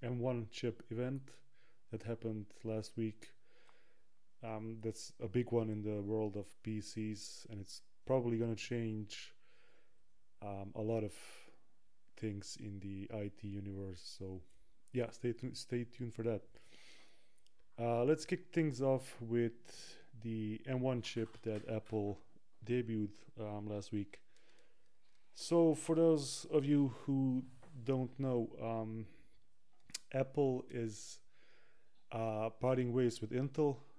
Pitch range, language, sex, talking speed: 110-125 Hz, English, male, 120 wpm